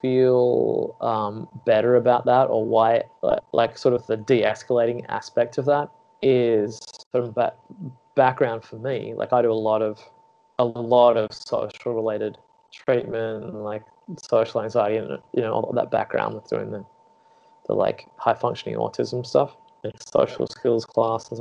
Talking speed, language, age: 165 wpm, English, 20-39